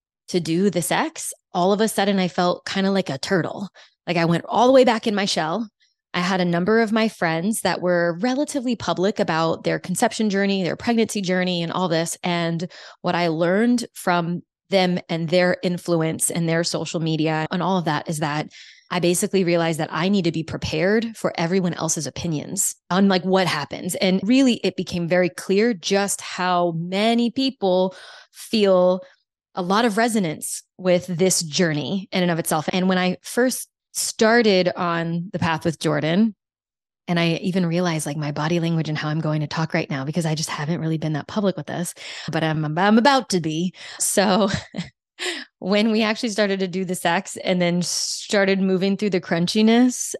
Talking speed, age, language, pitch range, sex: 195 wpm, 20-39, English, 170-210 Hz, female